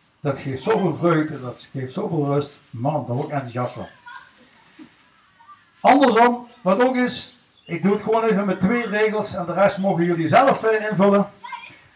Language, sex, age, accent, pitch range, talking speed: Dutch, male, 60-79, Dutch, 180-260 Hz, 160 wpm